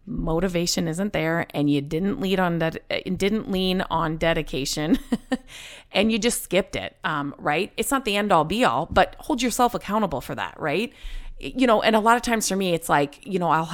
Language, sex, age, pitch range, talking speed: English, female, 30-49, 150-205 Hz, 215 wpm